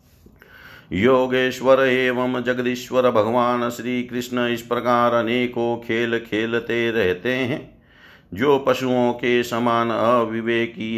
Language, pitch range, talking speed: Hindi, 110-125 Hz, 100 wpm